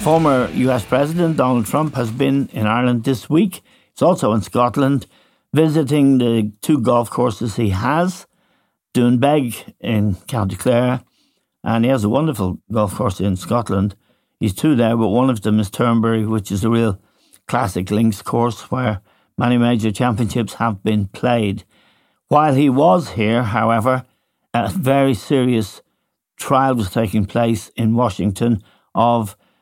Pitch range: 105-125 Hz